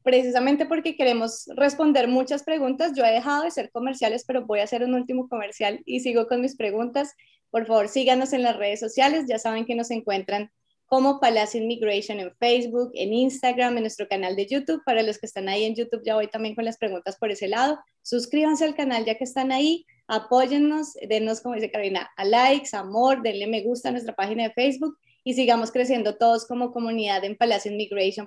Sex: female